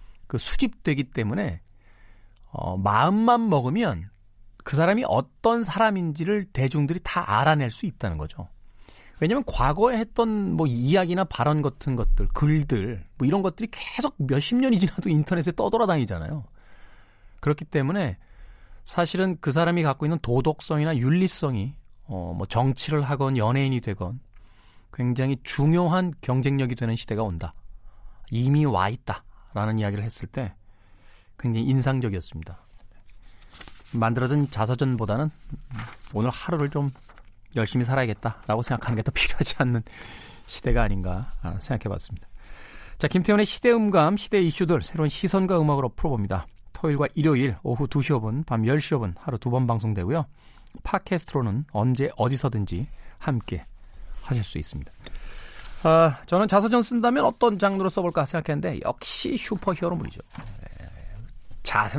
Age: 40-59